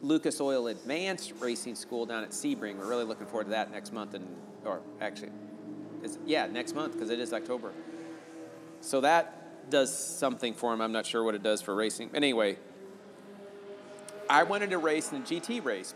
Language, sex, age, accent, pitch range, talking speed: English, male, 40-59, American, 105-155 Hz, 190 wpm